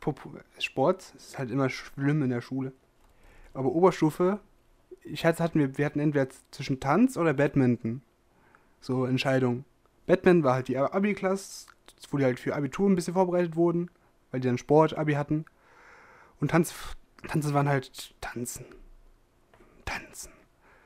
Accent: German